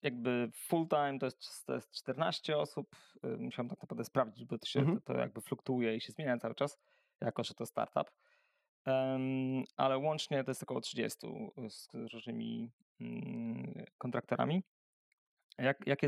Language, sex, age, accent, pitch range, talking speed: Polish, male, 20-39, native, 120-145 Hz, 155 wpm